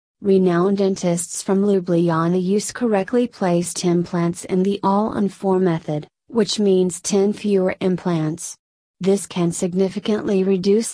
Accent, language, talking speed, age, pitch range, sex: American, English, 125 wpm, 30-49, 175-205 Hz, female